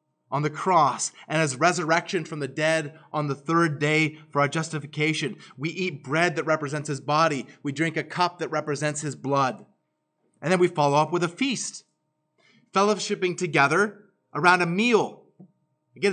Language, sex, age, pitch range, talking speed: English, male, 30-49, 155-195 Hz, 165 wpm